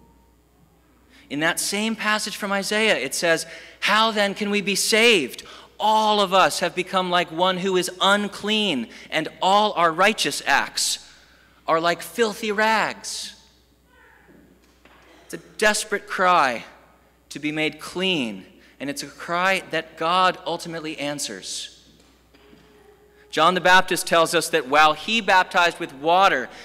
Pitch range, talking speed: 150-205 Hz, 135 wpm